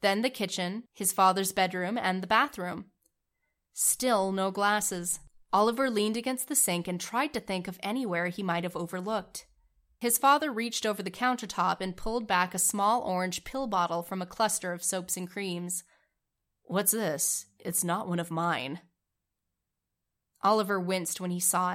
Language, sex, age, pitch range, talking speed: English, female, 20-39, 175-205 Hz, 165 wpm